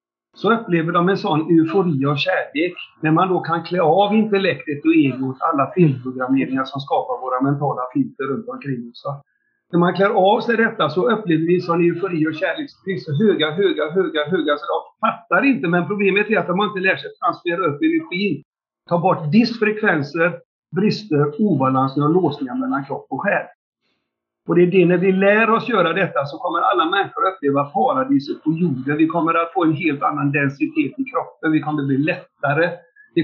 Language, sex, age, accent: Swedish, male, 50-69, native